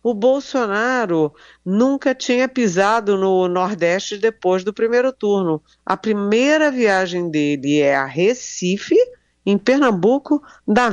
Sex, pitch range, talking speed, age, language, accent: female, 155-225 Hz, 115 wpm, 50-69, Portuguese, Brazilian